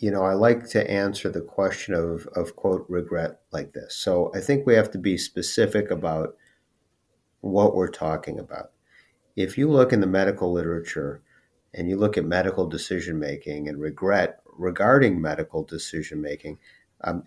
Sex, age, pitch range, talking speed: male, 50-69, 85-110 Hz, 160 wpm